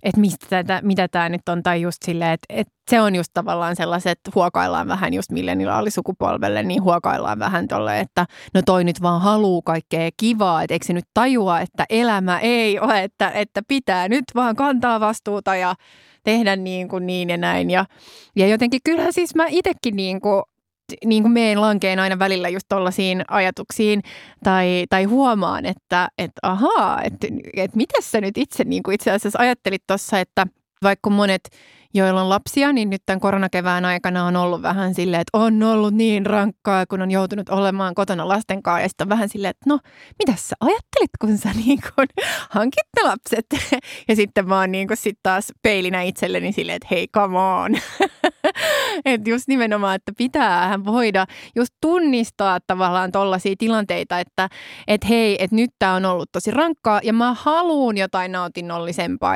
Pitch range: 185-225 Hz